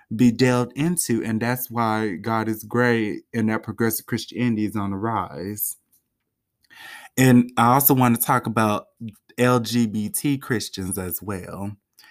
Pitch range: 110-135 Hz